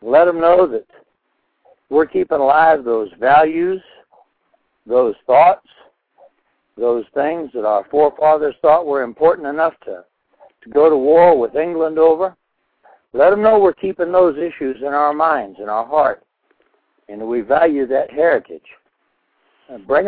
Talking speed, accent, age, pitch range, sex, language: 145 wpm, American, 60-79, 140-180 Hz, male, English